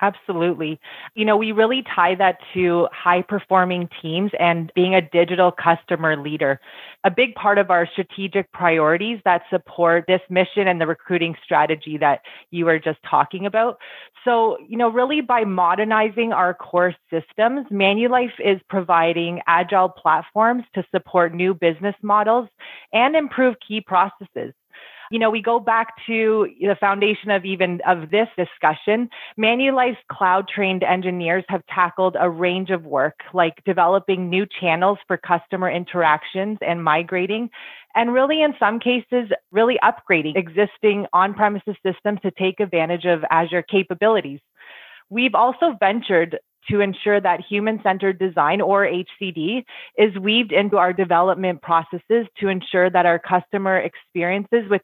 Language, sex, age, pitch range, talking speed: English, female, 30-49, 175-220 Hz, 140 wpm